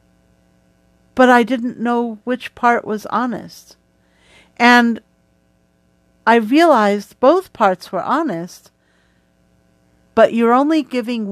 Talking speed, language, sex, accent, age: 100 wpm, English, female, American, 50-69